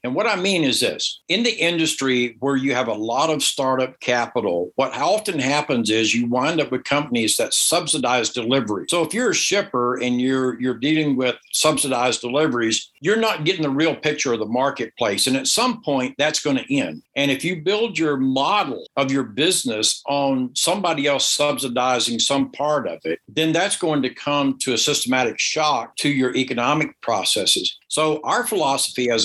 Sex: male